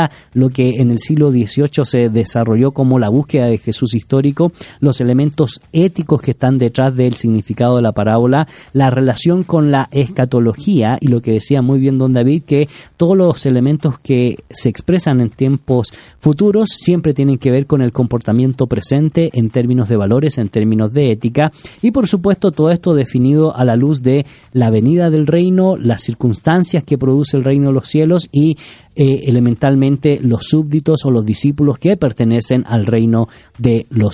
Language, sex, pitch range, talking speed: Spanish, male, 120-155 Hz, 175 wpm